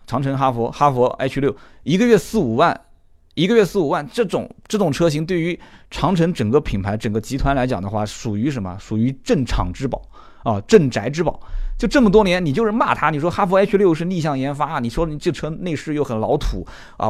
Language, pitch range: Chinese, 110-165 Hz